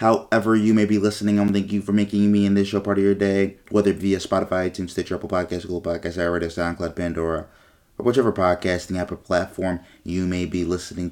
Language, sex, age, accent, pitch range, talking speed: English, male, 30-49, American, 85-105 Hz, 220 wpm